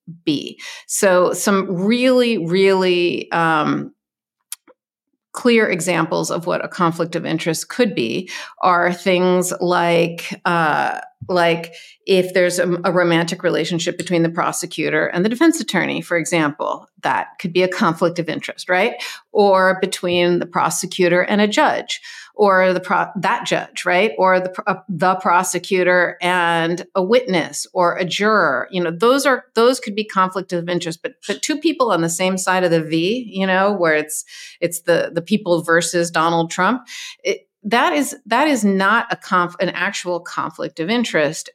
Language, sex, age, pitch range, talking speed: English, female, 50-69, 170-205 Hz, 165 wpm